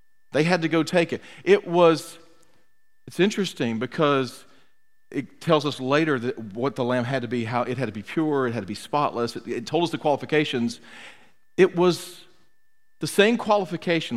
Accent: American